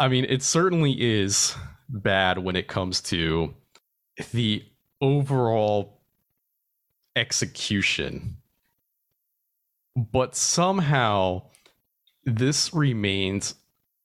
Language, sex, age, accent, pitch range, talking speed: English, male, 30-49, American, 90-130 Hz, 75 wpm